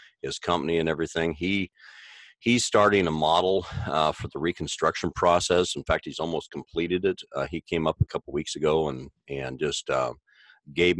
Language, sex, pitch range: English, male, 80-95 Hz